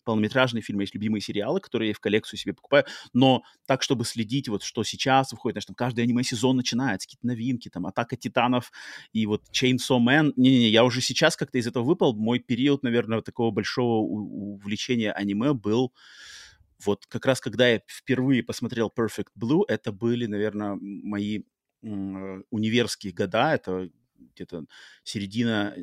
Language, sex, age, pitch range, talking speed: Russian, male, 30-49, 105-130 Hz, 160 wpm